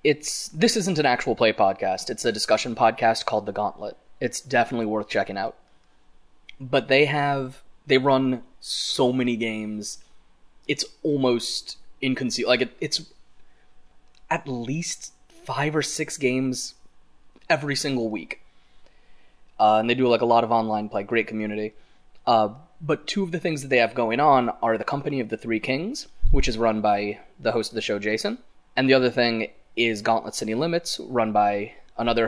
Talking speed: 175 wpm